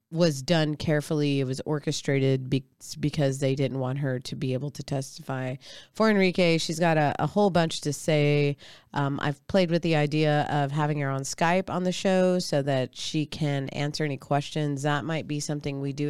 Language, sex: English, female